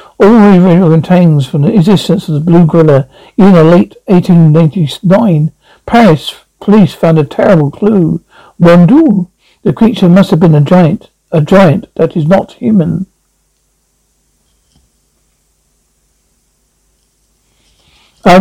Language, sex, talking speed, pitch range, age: English, male, 125 wpm, 155-195 Hz, 60-79